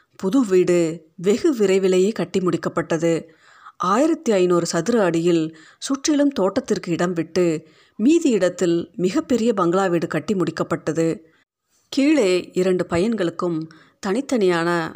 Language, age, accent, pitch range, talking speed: Tamil, 30-49, native, 170-210 Hz, 95 wpm